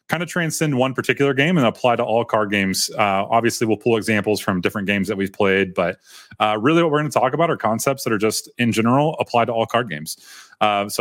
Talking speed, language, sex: 250 wpm, English, male